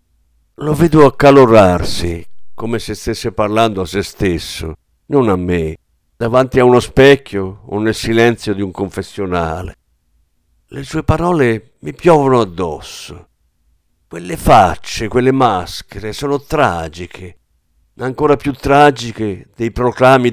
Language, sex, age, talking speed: Italian, male, 50-69, 120 wpm